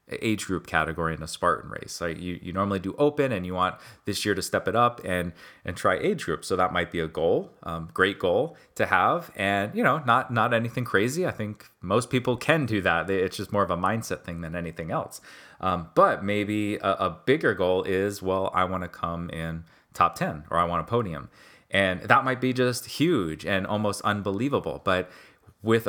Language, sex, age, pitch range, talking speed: English, male, 30-49, 90-110 Hz, 215 wpm